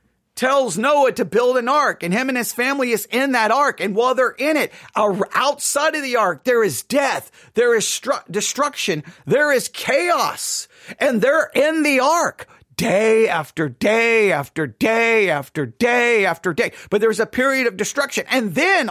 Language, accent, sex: English, American, male